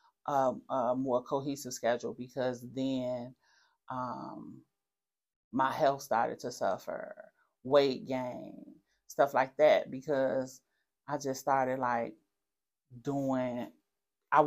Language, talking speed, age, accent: English, 100 wpm, 30-49, American